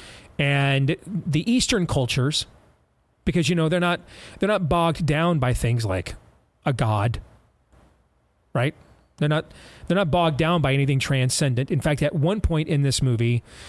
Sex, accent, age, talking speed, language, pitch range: male, American, 40-59, 160 wpm, English, 115-165 Hz